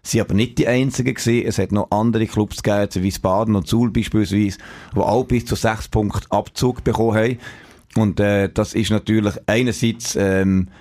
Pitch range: 100-115 Hz